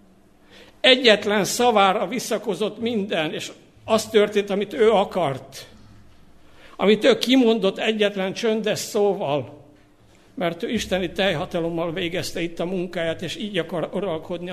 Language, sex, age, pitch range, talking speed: Hungarian, male, 60-79, 165-205 Hz, 115 wpm